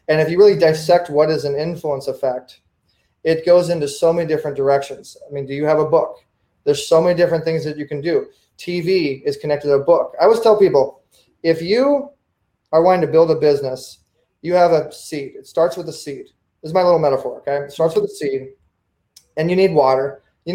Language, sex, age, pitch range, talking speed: English, male, 20-39, 140-190 Hz, 220 wpm